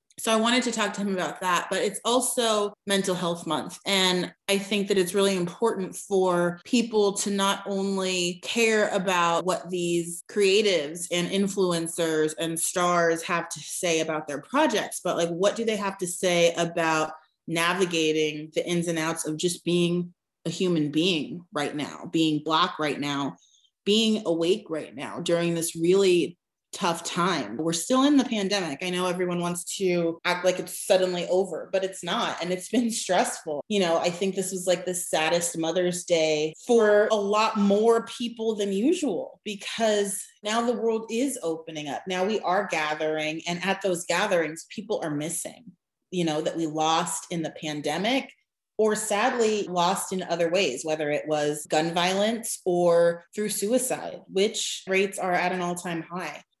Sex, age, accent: female, 30-49, American